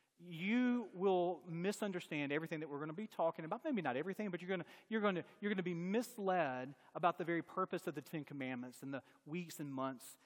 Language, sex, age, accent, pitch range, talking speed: English, male, 40-59, American, 195-290 Hz, 230 wpm